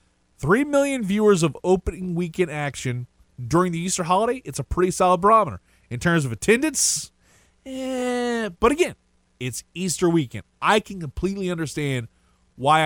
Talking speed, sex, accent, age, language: 145 wpm, male, American, 30-49, English